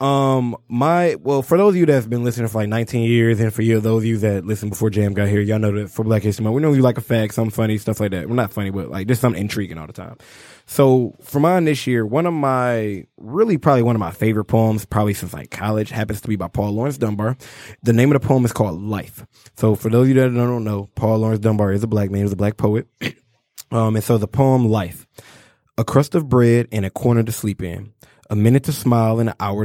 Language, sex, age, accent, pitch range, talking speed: English, male, 20-39, American, 105-125 Hz, 265 wpm